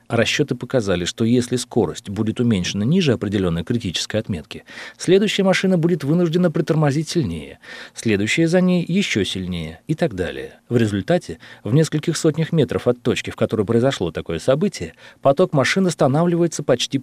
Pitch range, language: 105-160 Hz, Russian